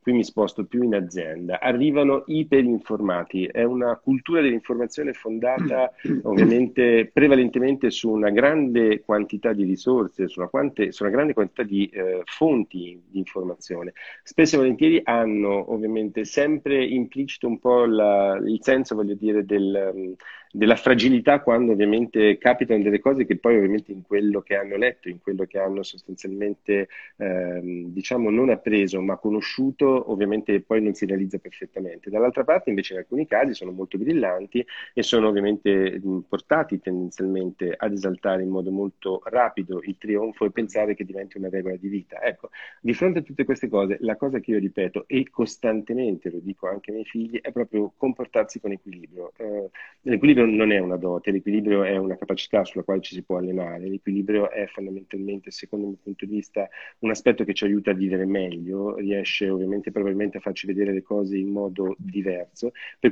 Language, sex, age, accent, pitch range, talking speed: Italian, male, 40-59, native, 95-120 Hz, 165 wpm